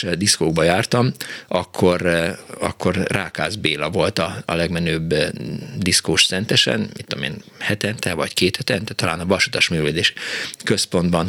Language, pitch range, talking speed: Hungarian, 85-105 Hz, 130 wpm